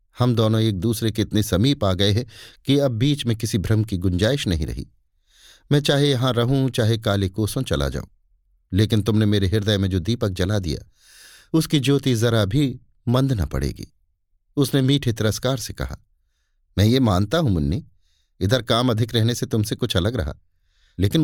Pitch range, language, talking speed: 90-130 Hz, Hindi, 185 wpm